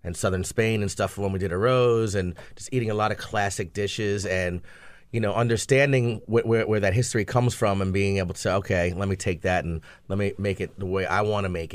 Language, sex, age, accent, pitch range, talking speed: English, male, 30-49, American, 95-120 Hz, 255 wpm